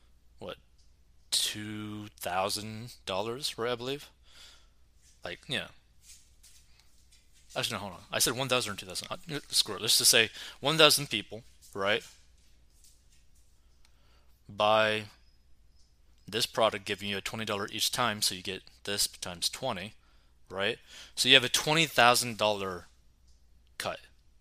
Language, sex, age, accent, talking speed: English, male, 20-39, American, 130 wpm